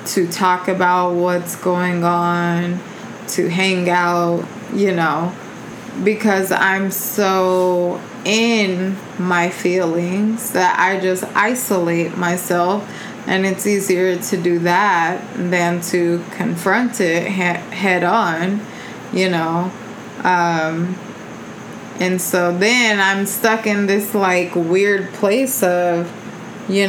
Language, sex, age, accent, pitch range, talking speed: English, female, 20-39, American, 180-215 Hz, 110 wpm